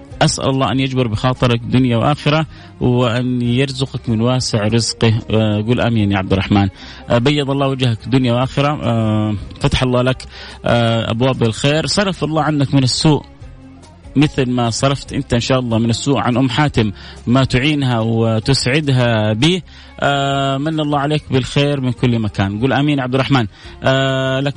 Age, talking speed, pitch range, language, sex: 30-49, 150 wpm, 120-145 Hz, Arabic, male